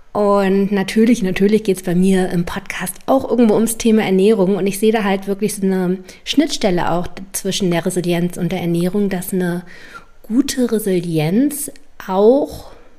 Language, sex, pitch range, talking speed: German, female, 180-225 Hz, 160 wpm